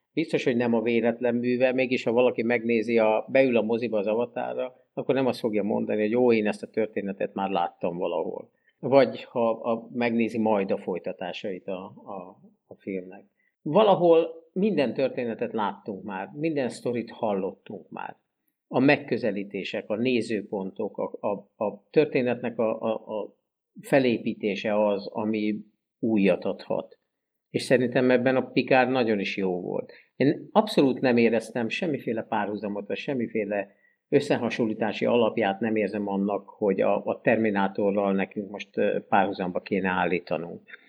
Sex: male